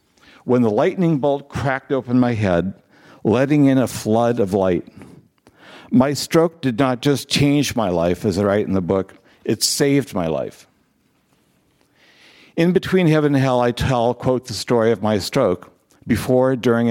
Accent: American